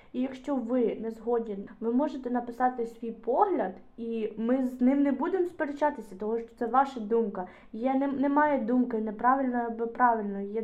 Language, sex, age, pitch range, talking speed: Ukrainian, female, 20-39, 230-290 Hz, 170 wpm